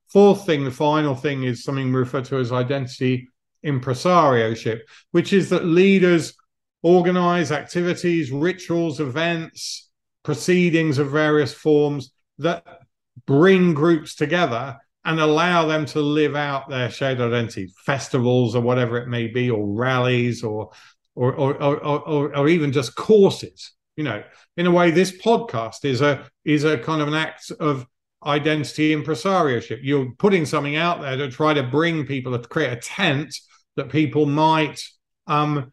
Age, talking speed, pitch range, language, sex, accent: 50-69, 155 wpm, 135-170 Hz, English, male, British